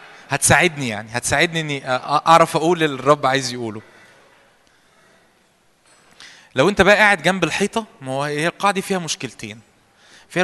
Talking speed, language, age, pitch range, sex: 125 wpm, Arabic, 20-39, 120-170 Hz, male